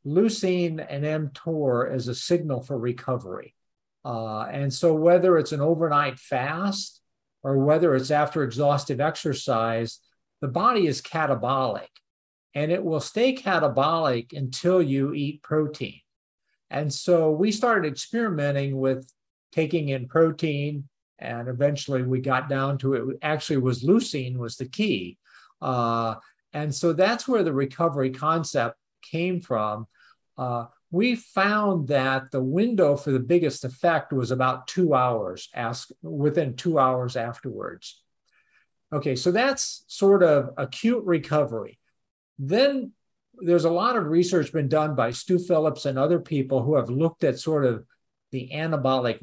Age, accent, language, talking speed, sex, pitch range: 50-69, American, English, 140 wpm, male, 130-170 Hz